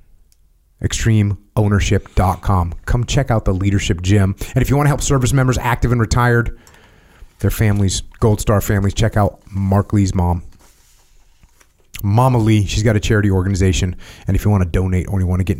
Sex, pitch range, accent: male, 85-110 Hz, American